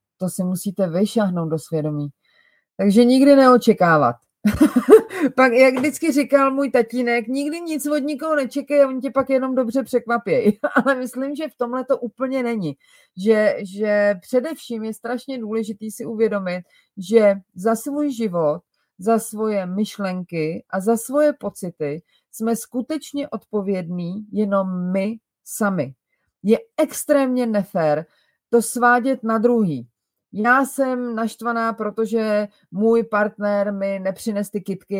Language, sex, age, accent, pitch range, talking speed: Czech, female, 30-49, native, 180-240 Hz, 130 wpm